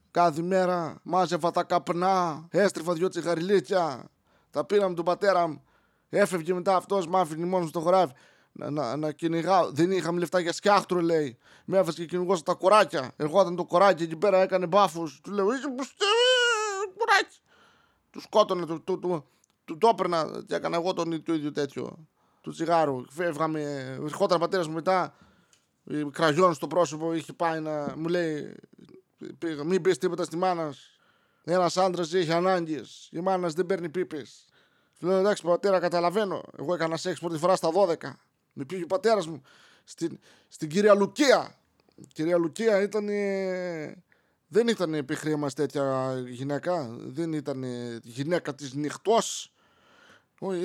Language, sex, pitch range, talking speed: Greek, male, 160-190 Hz, 140 wpm